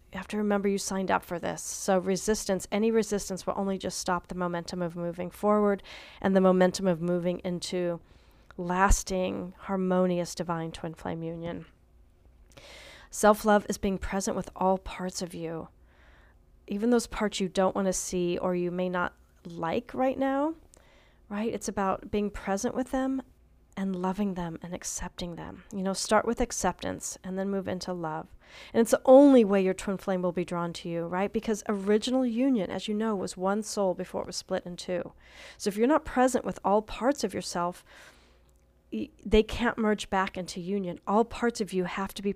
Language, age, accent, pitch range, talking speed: English, 40-59, American, 175-205 Hz, 190 wpm